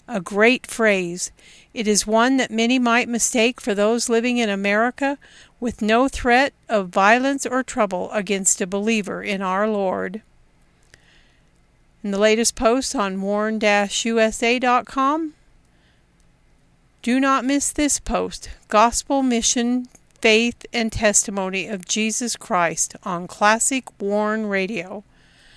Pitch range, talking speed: 200-245 Hz, 120 wpm